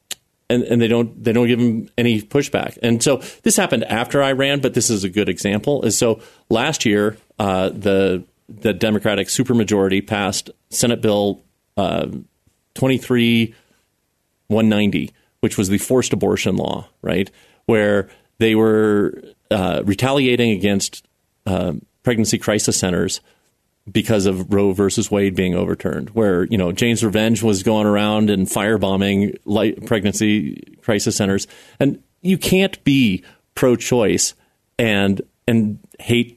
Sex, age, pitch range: male, 40-59, 105-135 Hz